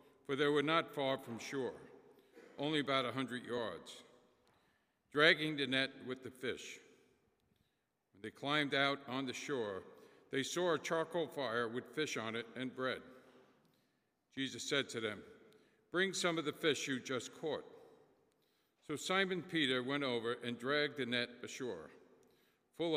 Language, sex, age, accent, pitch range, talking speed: English, male, 50-69, American, 125-150 Hz, 155 wpm